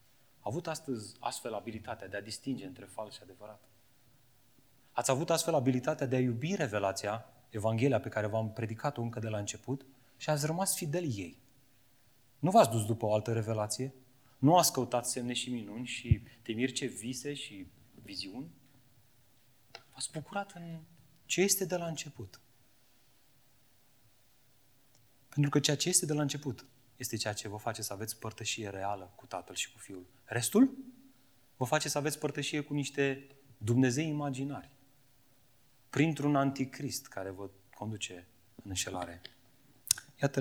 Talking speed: 150 wpm